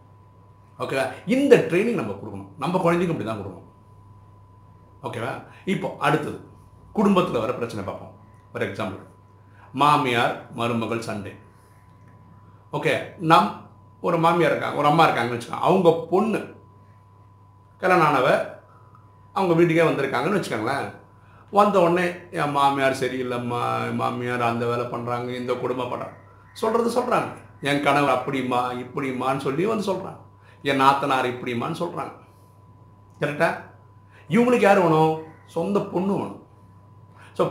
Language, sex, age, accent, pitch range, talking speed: Tamil, male, 50-69, native, 100-165 Hz, 115 wpm